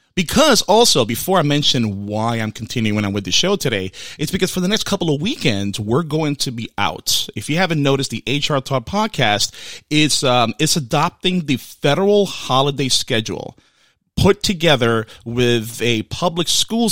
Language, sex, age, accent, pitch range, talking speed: English, male, 30-49, American, 110-160 Hz, 170 wpm